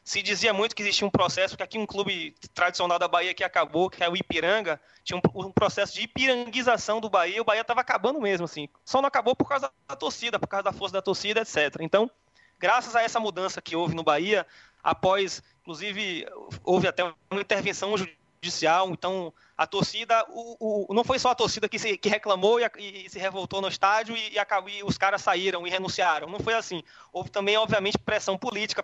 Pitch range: 180-220 Hz